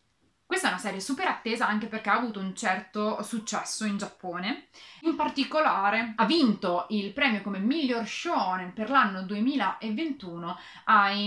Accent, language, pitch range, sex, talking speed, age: native, Italian, 200-260 Hz, female, 150 wpm, 20-39